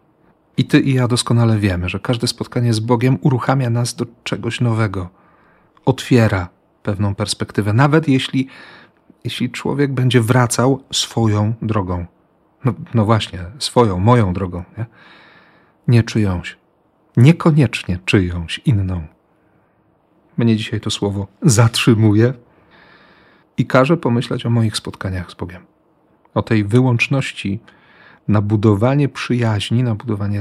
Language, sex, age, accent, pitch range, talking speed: Polish, male, 40-59, native, 100-130 Hz, 120 wpm